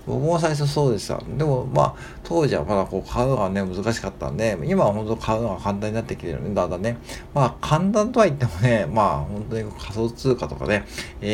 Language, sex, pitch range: Japanese, male, 85-130 Hz